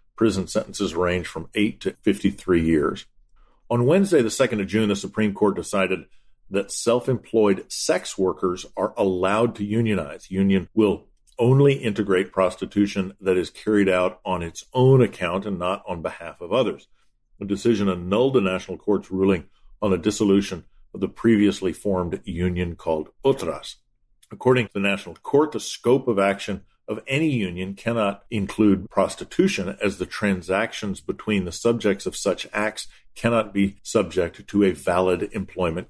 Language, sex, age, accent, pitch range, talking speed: English, male, 50-69, American, 95-110 Hz, 155 wpm